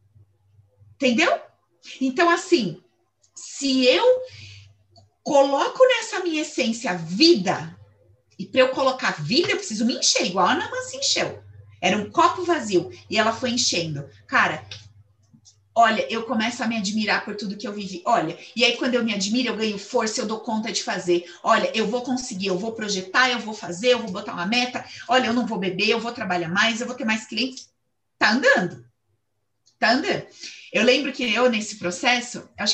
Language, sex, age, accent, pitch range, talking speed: Portuguese, female, 30-49, Brazilian, 180-250 Hz, 180 wpm